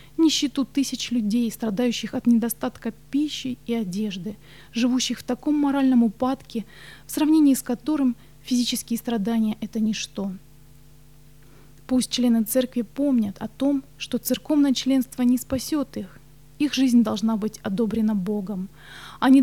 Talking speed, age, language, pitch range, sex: 125 wpm, 20-39, English, 220-265 Hz, female